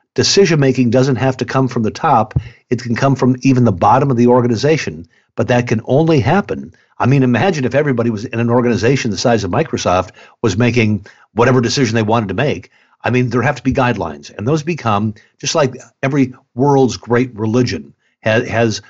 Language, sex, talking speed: English, male, 195 wpm